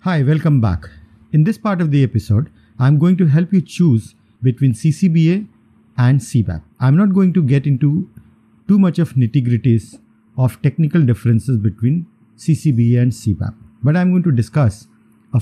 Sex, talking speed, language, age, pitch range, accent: male, 165 wpm, English, 50-69, 115-165 Hz, Indian